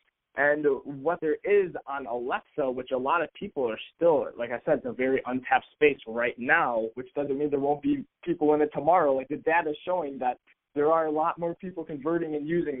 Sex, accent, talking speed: male, American, 225 wpm